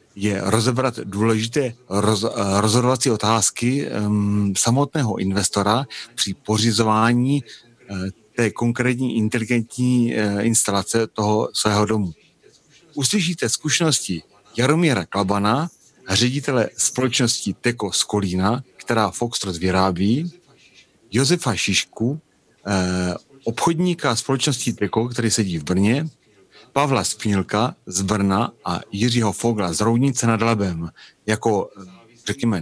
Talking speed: 100 wpm